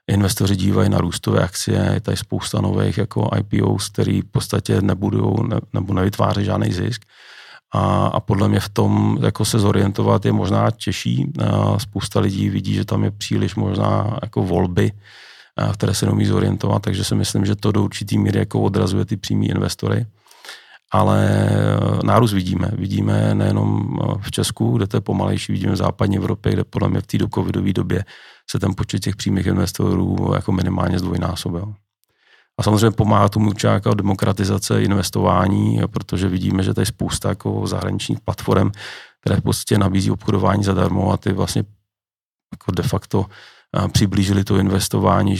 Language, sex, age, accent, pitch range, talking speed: Czech, male, 40-59, native, 95-110 Hz, 155 wpm